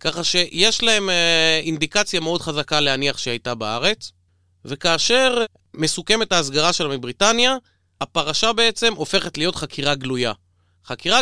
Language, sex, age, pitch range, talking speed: Hebrew, male, 30-49, 125-185 Hz, 110 wpm